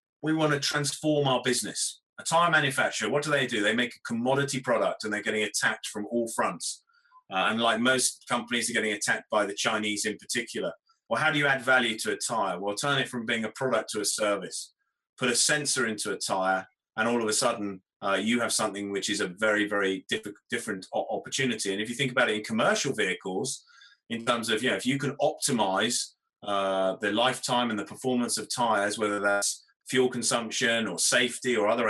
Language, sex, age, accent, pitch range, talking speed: English, male, 30-49, British, 105-140 Hz, 210 wpm